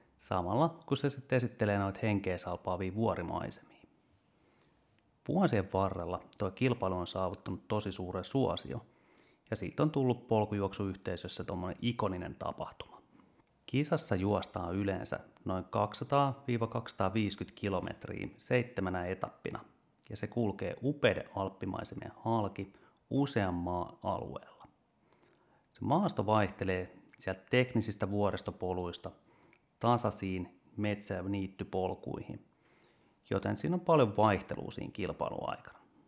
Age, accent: 30-49, native